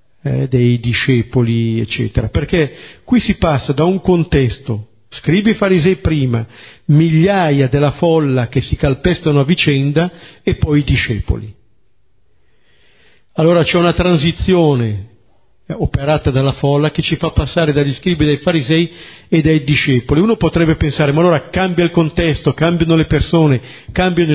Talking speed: 140 wpm